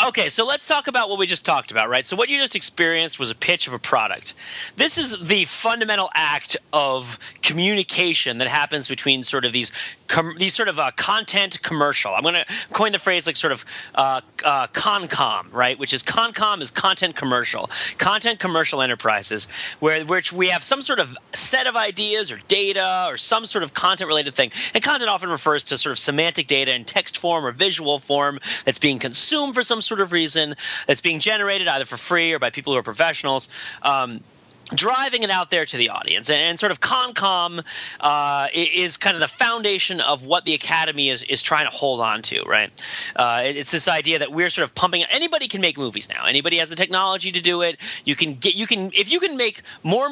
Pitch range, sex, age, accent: 140-200 Hz, male, 30-49, American